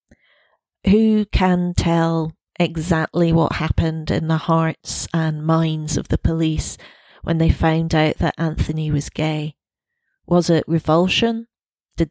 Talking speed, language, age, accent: 130 wpm, English, 30-49, British